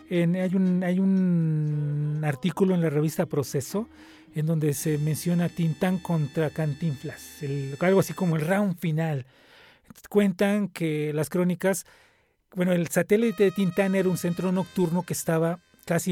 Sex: male